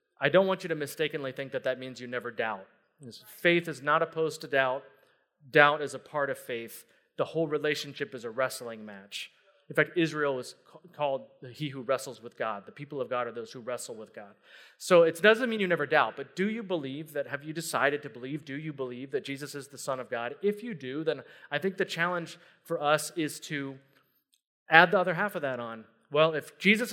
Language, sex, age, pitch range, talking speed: English, male, 30-49, 135-175 Hz, 225 wpm